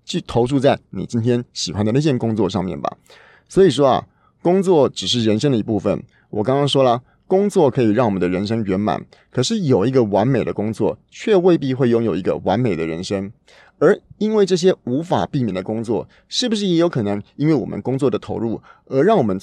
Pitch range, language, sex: 100-135 Hz, Chinese, male